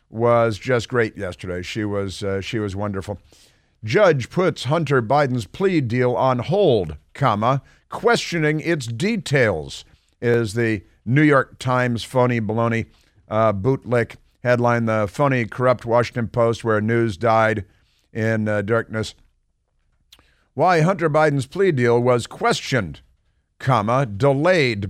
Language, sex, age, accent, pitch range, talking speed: English, male, 50-69, American, 105-130 Hz, 125 wpm